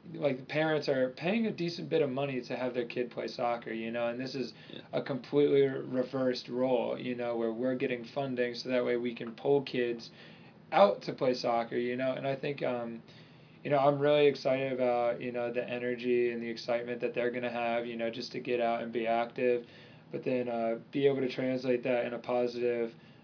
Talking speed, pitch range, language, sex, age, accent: 220 wpm, 120-135 Hz, English, male, 20-39, American